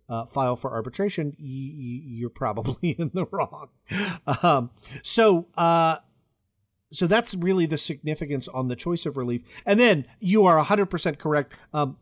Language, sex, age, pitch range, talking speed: English, male, 40-59, 120-165 Hz, 165 wpm